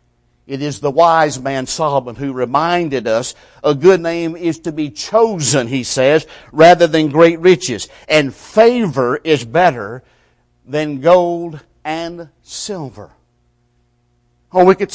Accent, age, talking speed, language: American, 50-69, 135 wpm, English